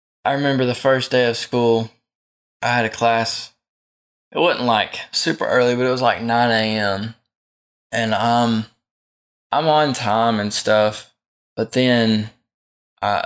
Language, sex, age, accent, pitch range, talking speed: English, male, 10-29, American, 105-125 Hz, 145 wpm